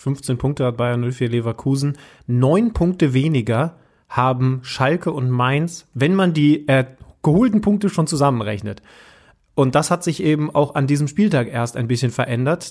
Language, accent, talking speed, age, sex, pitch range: German, German, 160 wpm, 30-49, male, 130-160 Hz